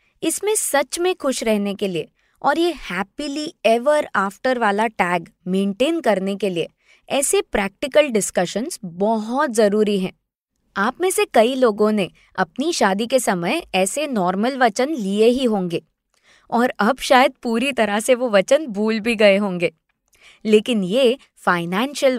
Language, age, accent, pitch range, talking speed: Hindi, 20-39, native, 195-295 Hz, 145 wpm